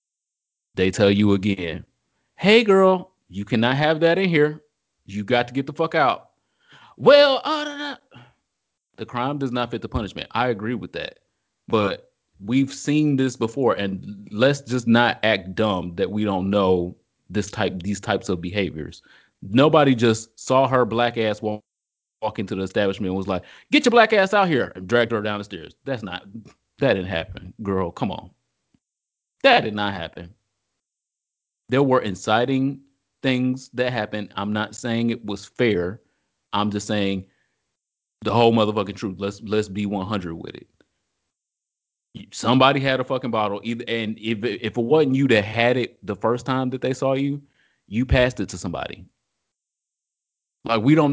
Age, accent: 30-49, American